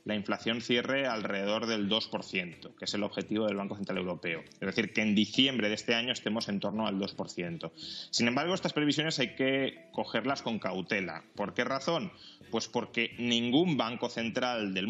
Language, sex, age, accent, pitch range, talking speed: Spanish, male, 20-39, Spanish, 105-145 Hz, 180 wpm